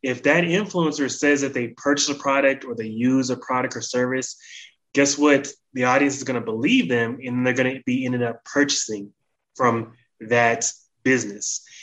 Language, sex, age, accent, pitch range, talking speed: English, male, 20-39, American, 120-140 Hz, 185 wpm